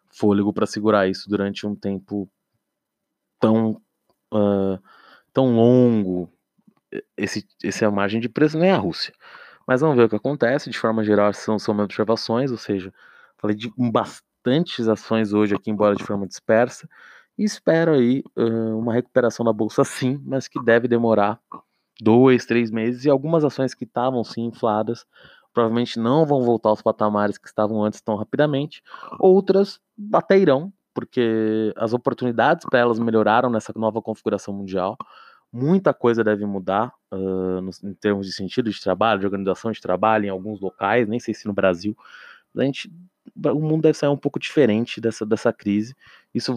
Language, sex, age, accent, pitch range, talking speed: Portuguese, male, 20-39, Brazilian, 105-130 Hz, 160 wpm